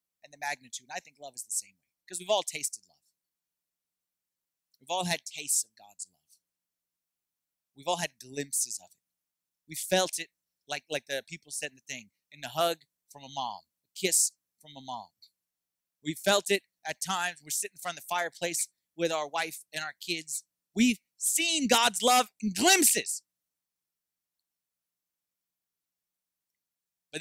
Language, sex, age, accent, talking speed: English, male, 30-49, American, 170 wpm